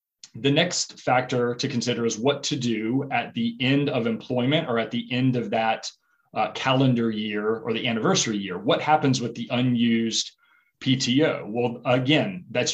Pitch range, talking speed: 115-140 Hz, 170 wpm